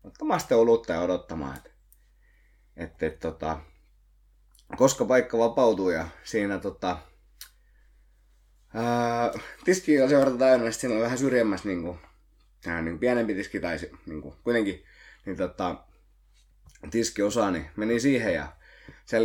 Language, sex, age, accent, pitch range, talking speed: Finnish, male, 20-39, native, 90-120 Hz, 95 wpm